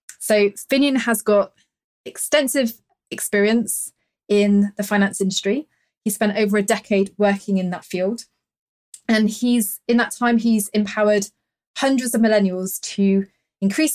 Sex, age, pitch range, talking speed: female, 20-39, 190-220 Hz, 135 wpm